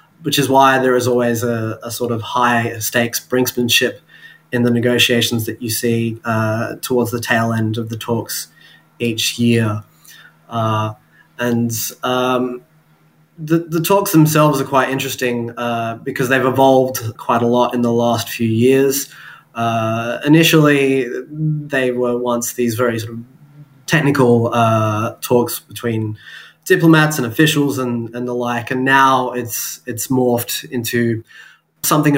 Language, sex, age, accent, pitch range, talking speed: English, male, 20-39, Australian, 120-135 Hz, 145 wpm